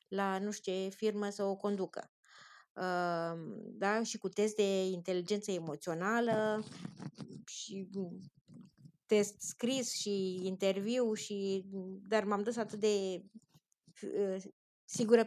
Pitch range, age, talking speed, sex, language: 190-230 Hz, 20-39, 105 wpm, female, Romanian